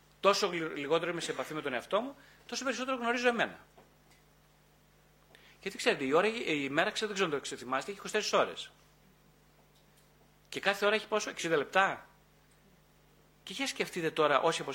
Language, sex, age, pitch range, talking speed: Greek, male, 30-49, 155-230 Hz, 165 wpm